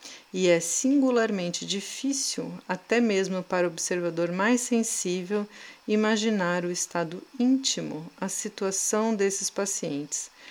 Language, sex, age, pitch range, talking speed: Portuguese, female, 40-59, 175-225 Hz, 110 wpm